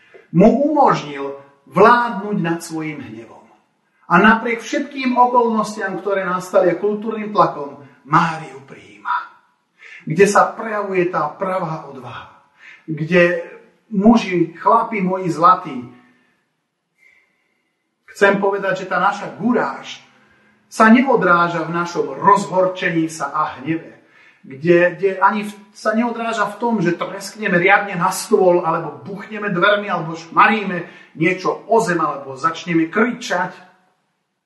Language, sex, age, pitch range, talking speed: Slovak, male, 40-59, 155-200 Hz, 110 wpm